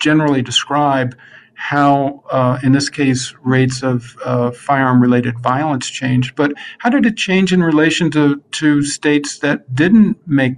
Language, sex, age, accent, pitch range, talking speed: English, male, 50-69, American, 130-165 Hz, 145 wpm